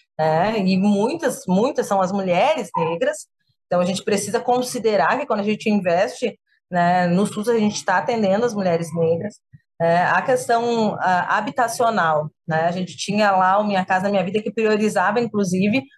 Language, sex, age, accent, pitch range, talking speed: Portuguese, female, 30-49, Brazilian, 180-240 Hz, 175 wpm